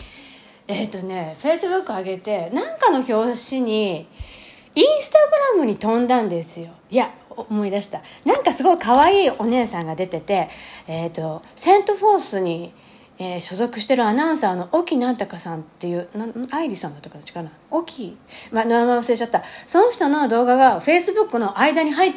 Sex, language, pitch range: female, Japanese, 200-320 Hz